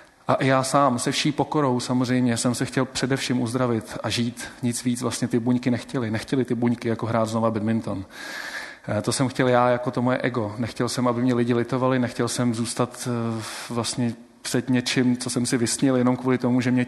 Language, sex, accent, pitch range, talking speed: Czech, male, native, 120-135 Hz, 200 wpm